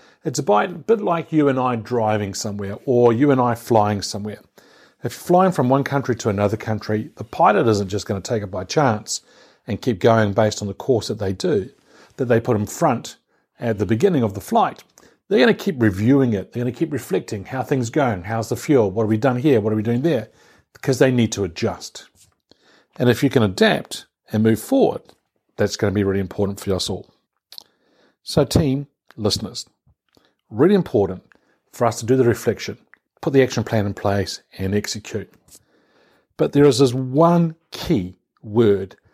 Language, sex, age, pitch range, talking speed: English, male, 50-69, 105-135 Hz, 200 wpm